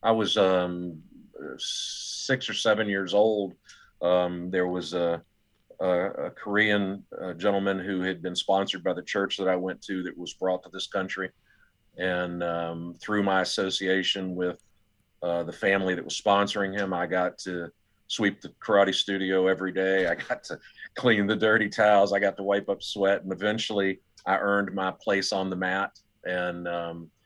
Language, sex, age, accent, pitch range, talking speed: English, male, 40-59, American, 90-100 Hz, 175 wpm